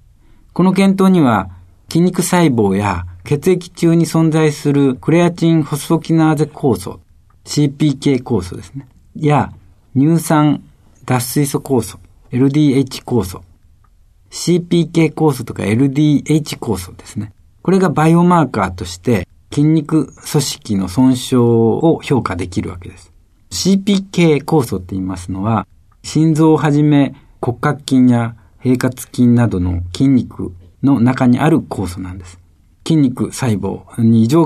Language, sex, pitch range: Japanese, male, 95-145 Hz